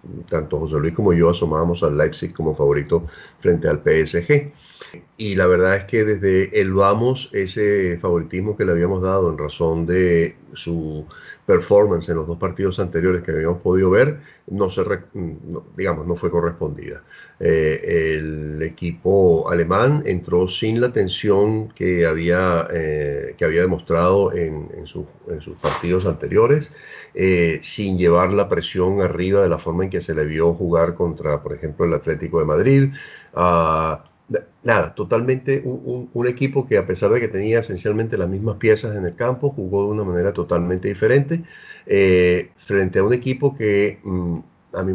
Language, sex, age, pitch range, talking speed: Spanish, male, 40-59, 85-105 Hz, 165 wpm